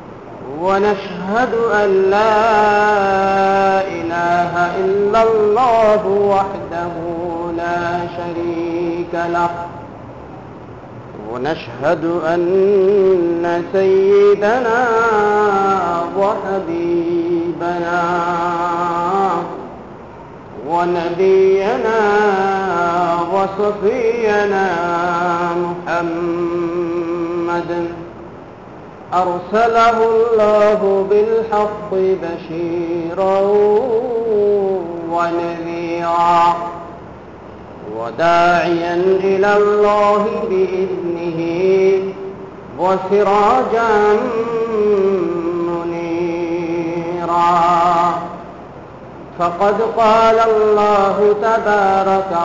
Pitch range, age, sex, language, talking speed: 170-205 Hz, 40-59, male, Bengali, 35 wpm